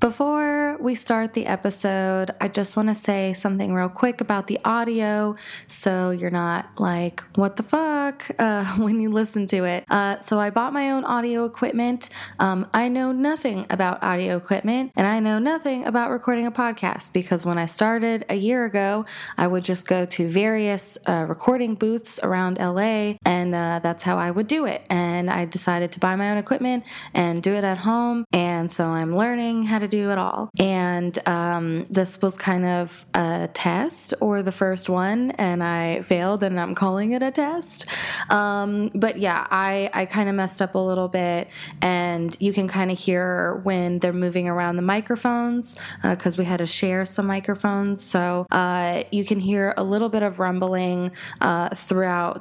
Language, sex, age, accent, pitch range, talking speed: English, female, 20-39, American, 180-225 Hz, 190 wpm